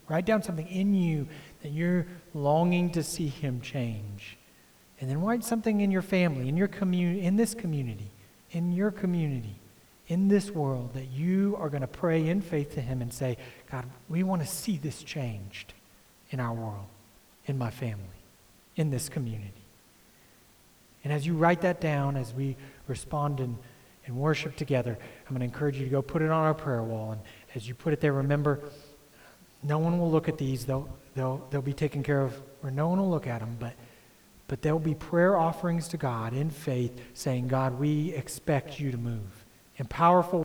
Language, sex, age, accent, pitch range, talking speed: English, male, 40-59, American, 125-170 Hz, 190 wpm